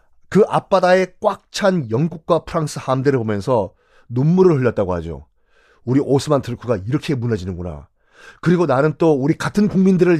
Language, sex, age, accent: Korean, male, 40-59, native